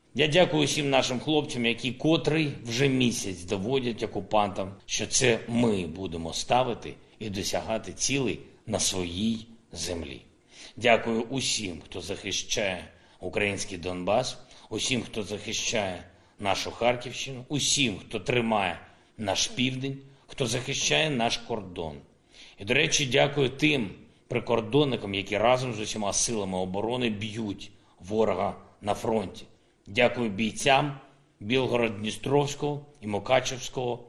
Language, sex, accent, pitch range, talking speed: Ukrainian, male, native, 95-130 Hz, 110 wpm